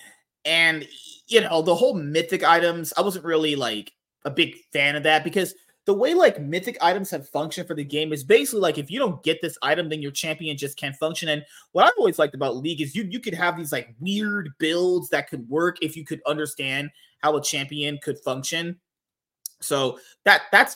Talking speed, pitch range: 210 wpm, 145-180 Hz